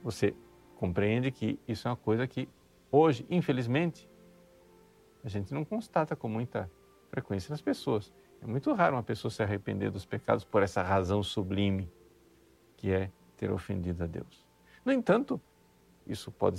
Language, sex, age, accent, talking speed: Portuguese, male, 50-69, Brazilian, 150 wpm